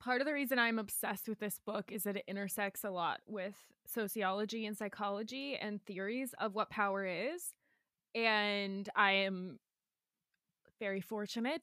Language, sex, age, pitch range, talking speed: English, female, 20-39, 200-240 Hz, 155 wpm